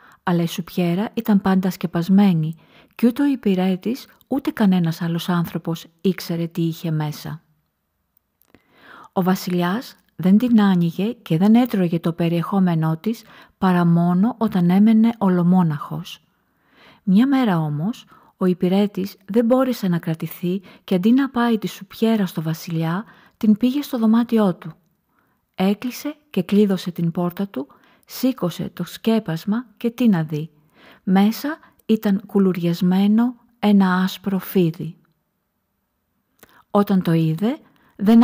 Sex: female